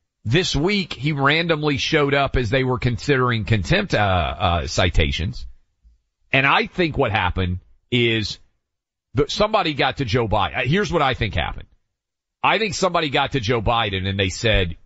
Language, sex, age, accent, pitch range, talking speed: English, male, 40-59, American, 105-145 Hz, 160 wpm